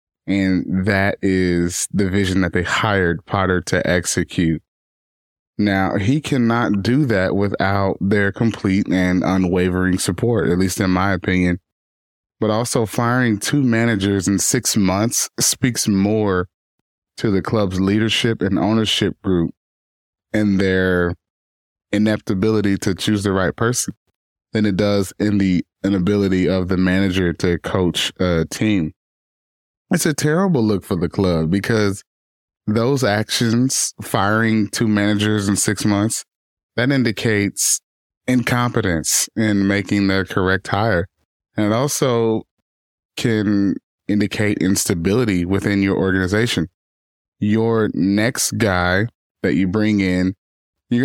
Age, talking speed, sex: 20-39, 125 wpm, male